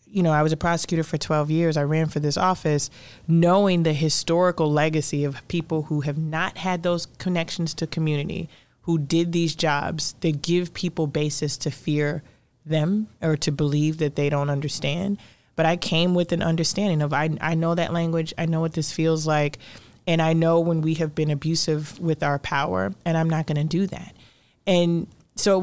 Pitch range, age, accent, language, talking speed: 150-170 Hz, 30-49, American, English, 200 wpm